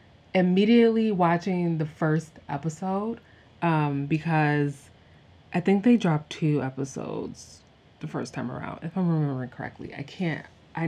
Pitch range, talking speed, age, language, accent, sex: 145-180 Hz, 130 wpm, 20-39, English, American, female